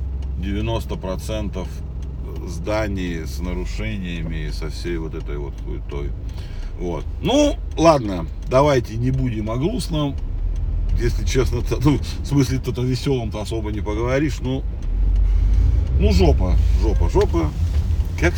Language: Russian